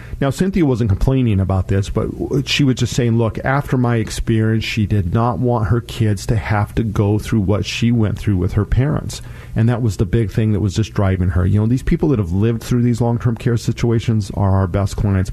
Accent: American